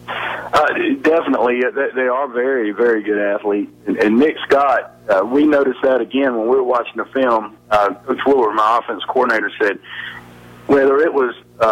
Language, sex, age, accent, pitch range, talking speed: English, male, 50-69, American, 100-135 Hz, 165 wpm